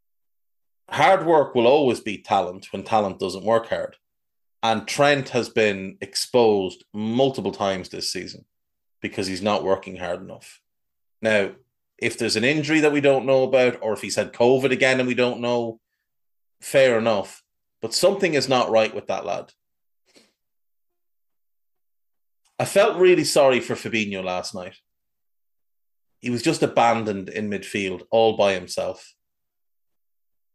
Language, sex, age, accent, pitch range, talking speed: English, male, 30-49, Irish, 100-130 Hz, 145 wpm